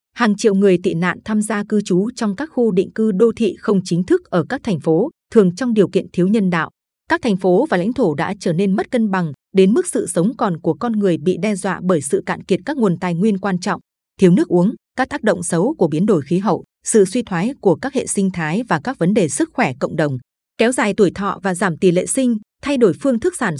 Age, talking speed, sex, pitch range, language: 20-39, 265 wpm, female, 180-230 Hz, Vietnamese